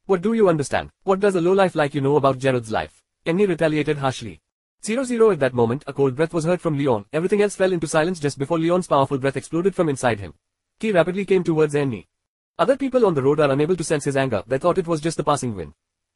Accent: Indian